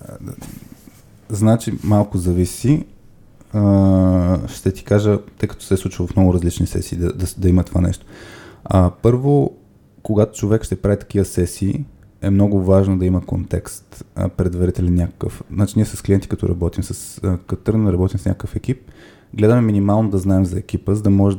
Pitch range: 90-105 Hz